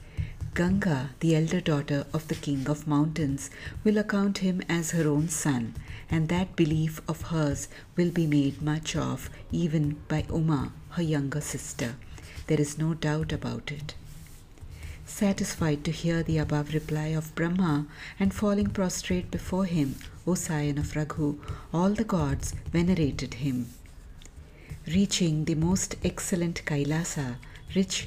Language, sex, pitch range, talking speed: English, female, 145-175 Hz, 140 wpm